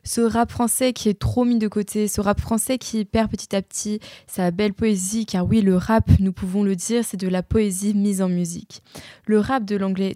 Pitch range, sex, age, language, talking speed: 185-220 Hz, female, 20-39, French, 230 wpm